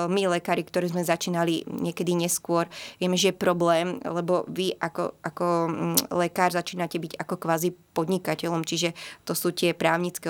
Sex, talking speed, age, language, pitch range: female, 145 wpm, 20-39, Slovak, 170-185 Hz